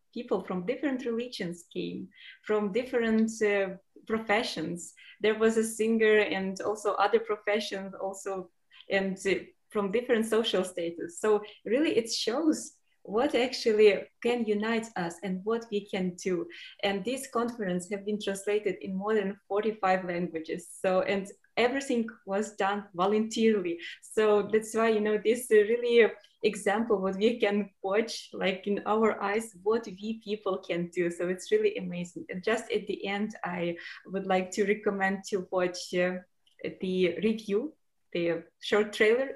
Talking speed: 155 wpm